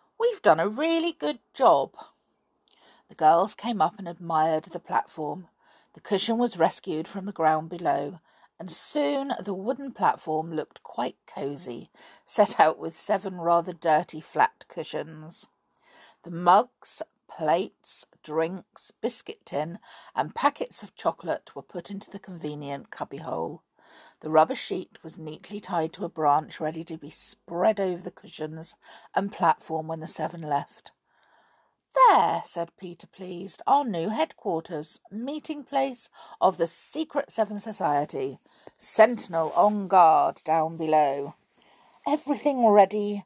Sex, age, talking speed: female, 50-69, 135 wpm